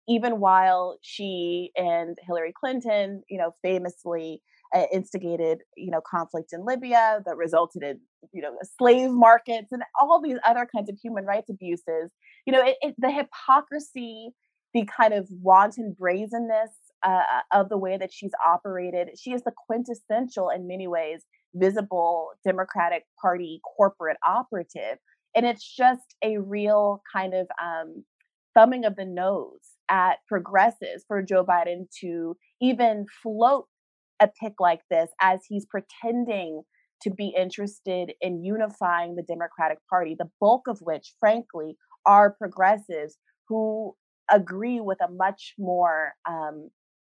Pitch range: 175-230 Hz